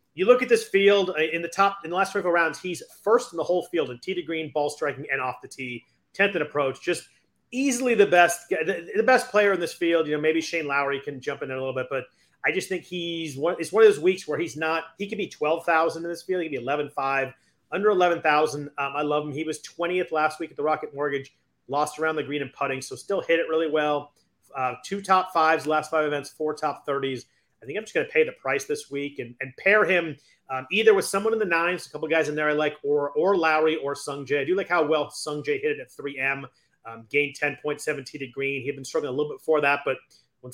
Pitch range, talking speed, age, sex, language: 140-180 Hz, 270 wpm, 30-49, male, English